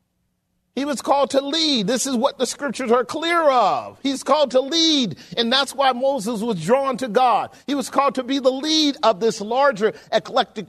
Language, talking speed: English, 200 wpm